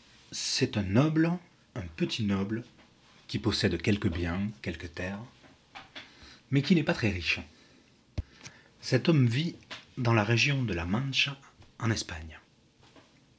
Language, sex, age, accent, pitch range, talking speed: French, male, 30-49, French, 100-140 Hz, 130 wpm